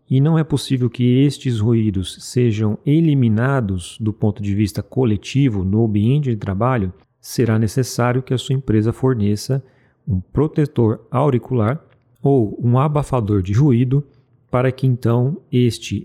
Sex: male